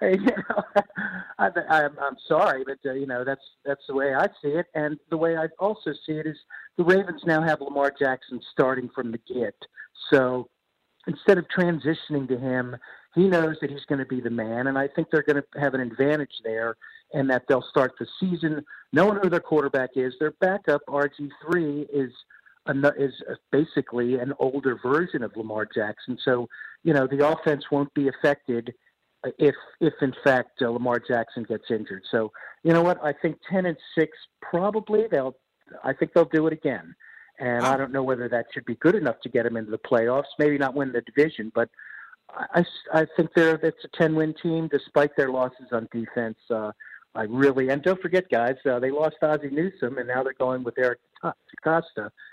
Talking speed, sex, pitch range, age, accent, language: 195 wpm, male, 125-160 Hz, 50-69, American, English